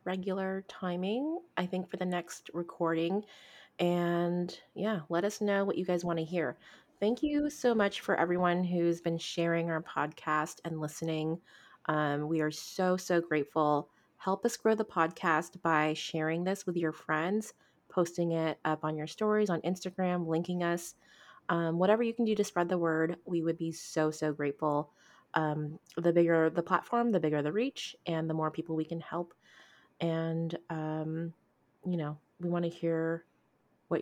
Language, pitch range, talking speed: English, 160-200 Hz, 175 wpm